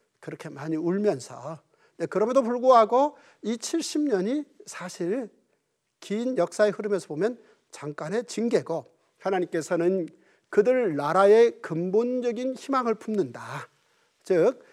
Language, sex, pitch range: Korean, male, 170-255 Hz